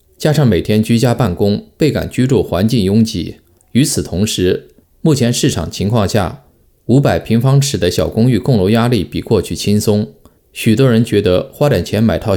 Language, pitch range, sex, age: Chinese, 95-125 Hz, male, 20-39